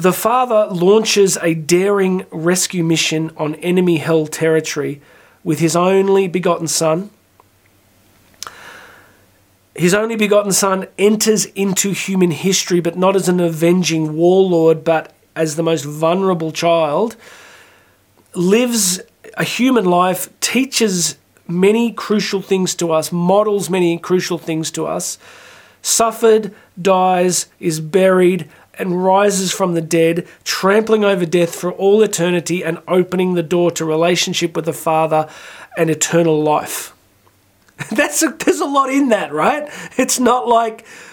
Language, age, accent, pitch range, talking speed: English, 40-59, Australian, 165-210 Hz, 130 wpm